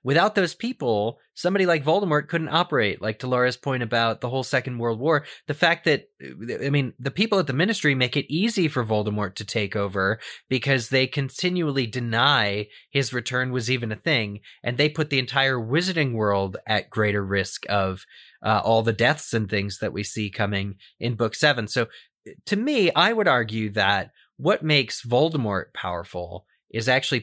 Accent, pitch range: American, 110-150 Hz